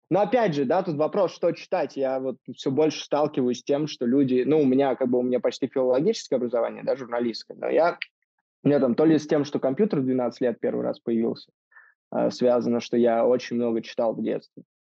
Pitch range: 125-150 Hz